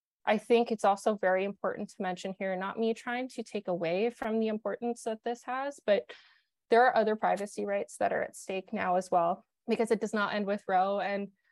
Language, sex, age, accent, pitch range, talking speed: English, female, 20-39, American, 190-225 Hz, 220 wpm